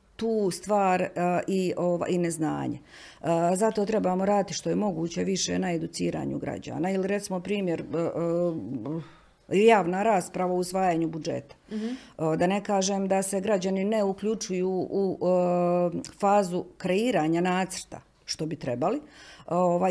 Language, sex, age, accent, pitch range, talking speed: Croatian, female, 50-69, native, 170-200 Hz, 115 wpm